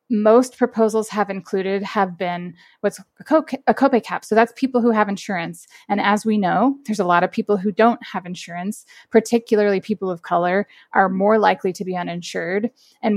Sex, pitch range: female, 185-220 Hz